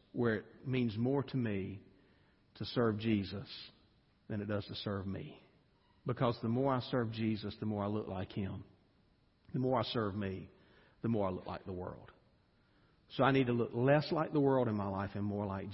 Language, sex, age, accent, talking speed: English, male, 50-69, American, 205 wpm